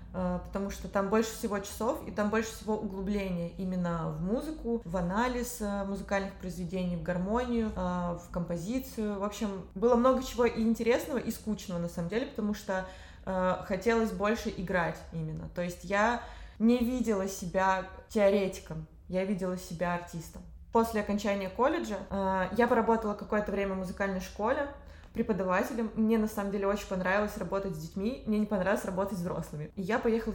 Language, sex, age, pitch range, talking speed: Russian, female, 20-39, 185-225 Hz, 160 wpm